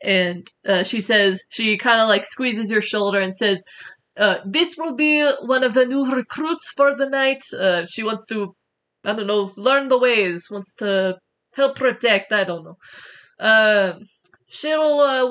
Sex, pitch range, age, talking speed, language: female, 195-255 Hz, 20-39, 175 wpm, English